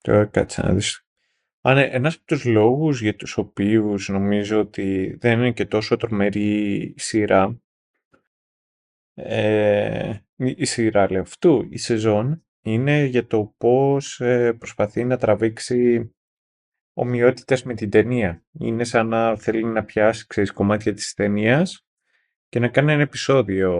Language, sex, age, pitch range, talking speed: Greek, male, 20-39, 105-125 Hz, 130 wpm